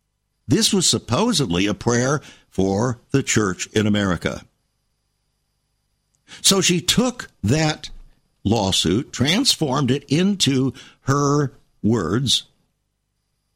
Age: 60-79